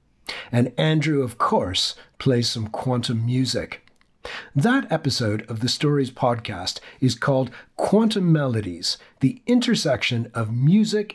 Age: 40-59